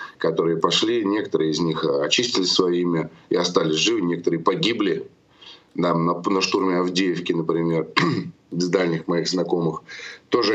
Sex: male